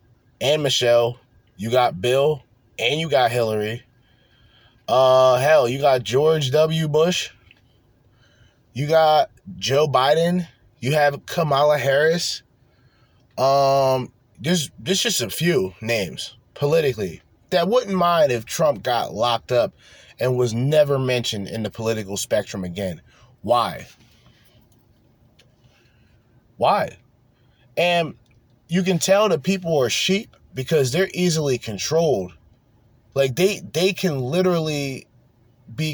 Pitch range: 115-155 Hz